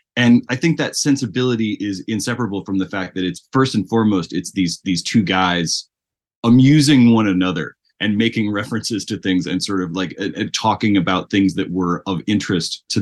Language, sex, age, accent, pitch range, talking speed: English, male, 30-49, American, 90-115 Hz, 190 wpm